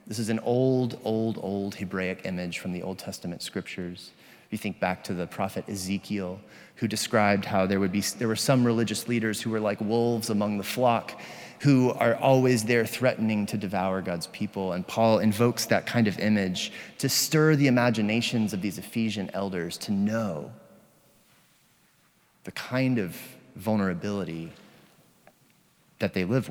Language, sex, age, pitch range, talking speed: English, male, 30-49, 100-125 Hz, 160 wpm